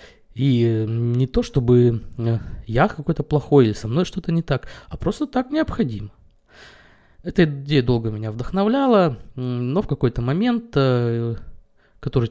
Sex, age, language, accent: male, 20-39, Russian, native